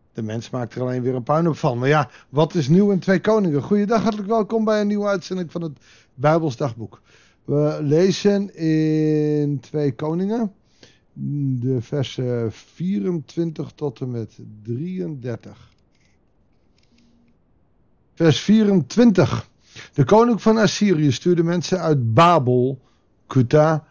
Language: Dutch